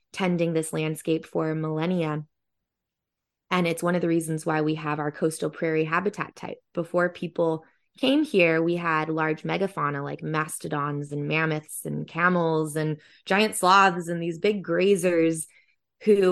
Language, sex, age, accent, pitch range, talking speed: English, female, 20-39, American, 155-180 Hz, 150 wpm